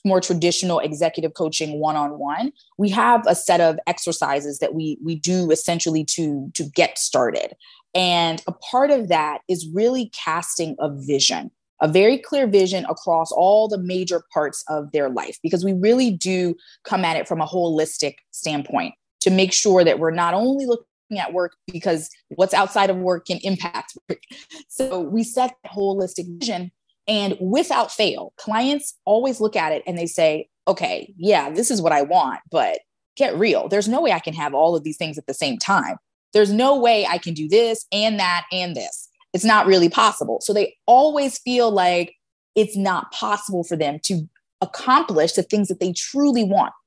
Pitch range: 165-230 Hz